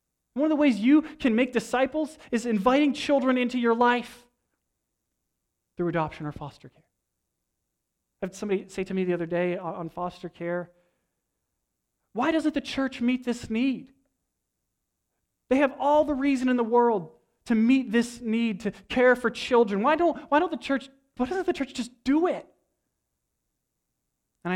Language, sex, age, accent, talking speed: English, male, 30-49, American, 165 wpm